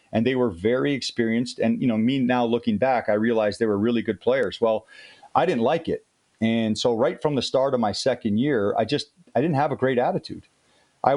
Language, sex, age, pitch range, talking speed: English, male, 40-59, 105-130 Hz, 230 wpm